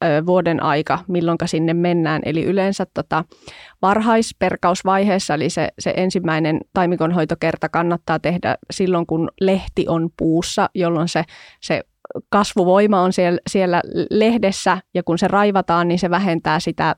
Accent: native